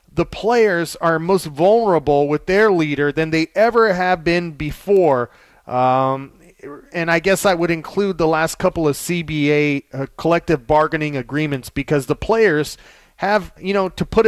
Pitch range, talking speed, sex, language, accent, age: 150-205 Hz, 160 wpm, male, English, American, 30-49